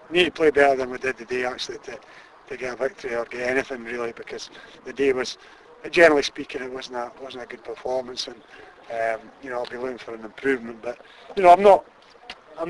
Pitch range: 120-150 Hz